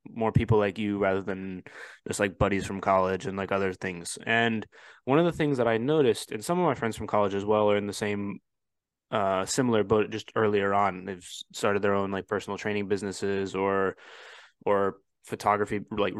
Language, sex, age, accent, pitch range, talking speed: English, male, 20-39, American, 100-120 Hz, 200 wpm